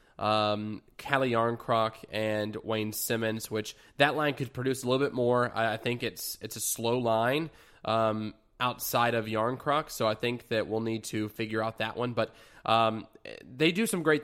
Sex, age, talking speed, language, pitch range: male, 20-39, 180 wpm, English, 110-130 Hz